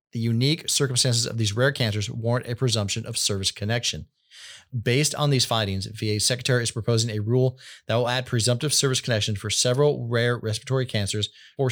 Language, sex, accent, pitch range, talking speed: English, male, American, 105-130 Hz, 180 wpm